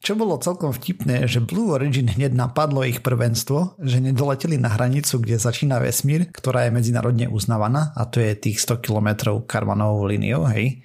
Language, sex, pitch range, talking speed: Slovak, male, 115-130 Hz, 170 wpm